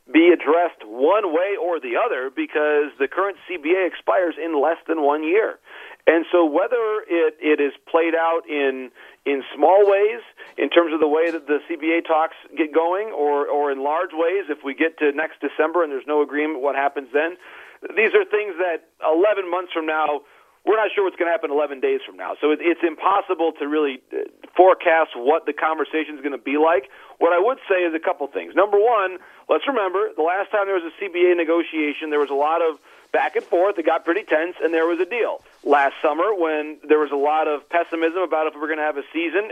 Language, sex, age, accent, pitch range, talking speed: English, male, 40-59, American, 150-190 Hz, 220 wpm